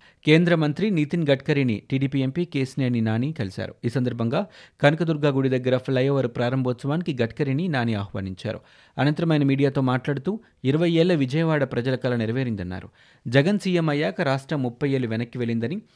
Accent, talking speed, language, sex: native, 140 wpm, Telugu, male